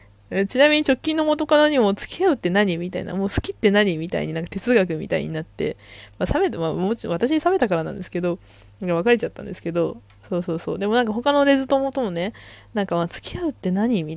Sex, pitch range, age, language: female, 175-250 Hz, 20-39, Japanese